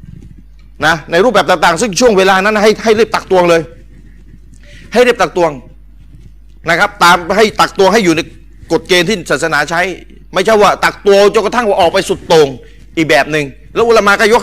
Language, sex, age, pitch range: Thai, male, 30-49, 145-195 Hz